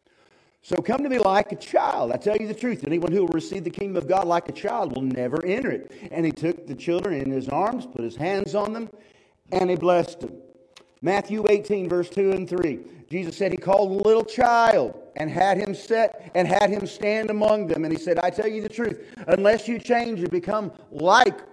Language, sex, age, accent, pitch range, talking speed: English, male, 40-59, American, 145-200 Hz, 225 wpm